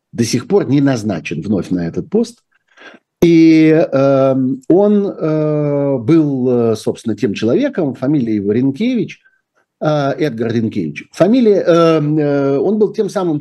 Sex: male